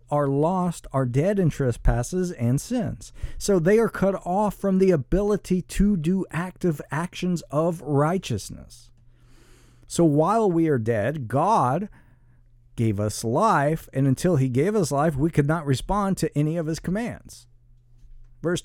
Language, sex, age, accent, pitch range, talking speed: English, male, 50-69, American, 120-170 Hz, 150 wpm